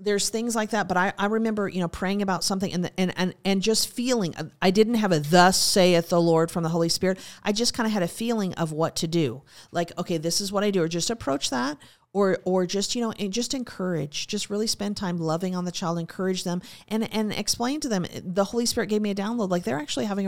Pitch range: 165-205 Hz